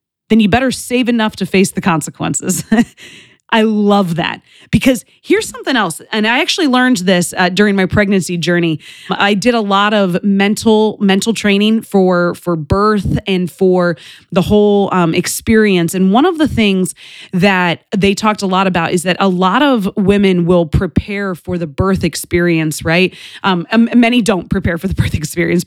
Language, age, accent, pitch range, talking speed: English, 20-39, American, 175-220 Hz, 180 wpm